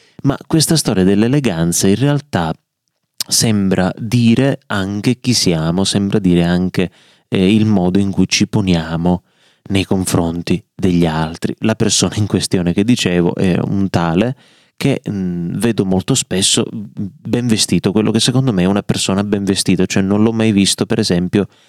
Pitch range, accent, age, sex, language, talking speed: 90-115 Hz, native, 30-49, male, Italian, 155 wpm